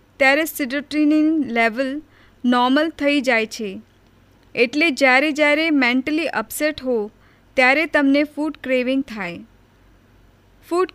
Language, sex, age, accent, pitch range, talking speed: Gujarati, female, 20-39, native, 225-290 Hz, 95 wpm